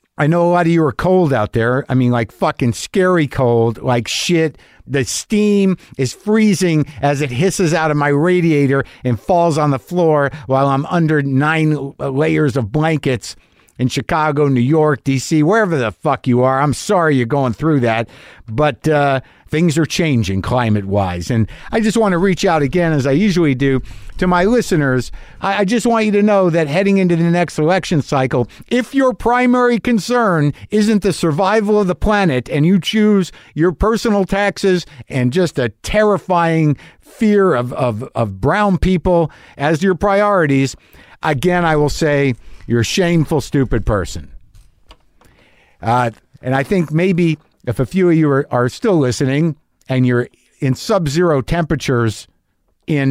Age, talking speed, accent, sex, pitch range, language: 50-69, 170 wpm, American, male, 125-175 Hz, English